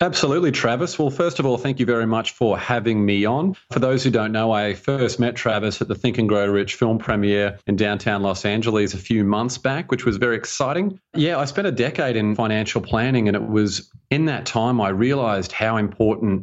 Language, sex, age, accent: English, male, 30-49, Australian